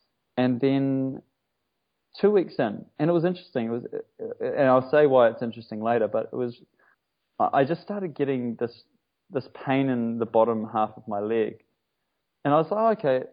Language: English